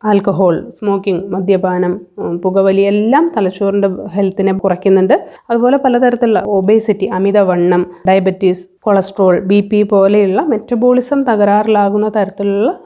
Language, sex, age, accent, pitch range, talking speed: Malayalam, female, 20-39, native, 195-220 Hz, 90 wpm